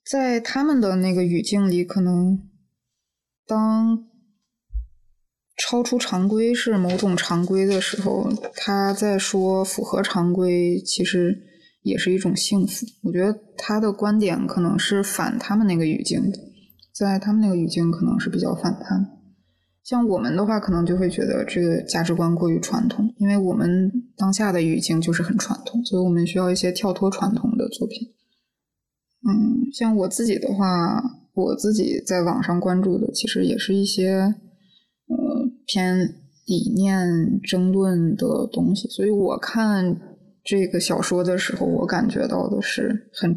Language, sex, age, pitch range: Chinese, female, 20-39, 180-230 Hz